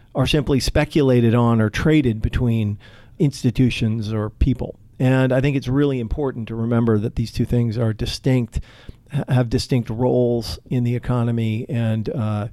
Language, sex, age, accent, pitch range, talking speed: English, male, 40-59, American, 120-145 Hz, 155 wpm